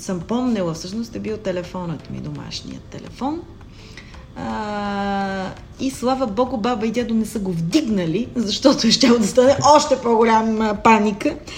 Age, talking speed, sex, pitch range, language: 30-49, 145 wpm, female, 190-270 Hz, Bulgarian